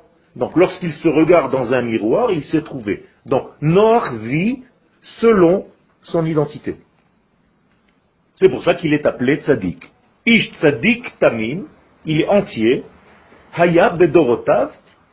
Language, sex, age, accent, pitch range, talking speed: French, male, 40-59, French, 130-185 Hz, 125 wpm